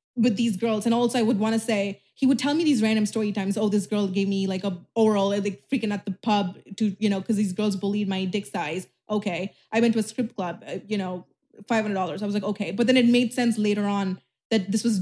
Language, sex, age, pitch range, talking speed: English, female, 20-39, 205-245 Hz, 270 wpm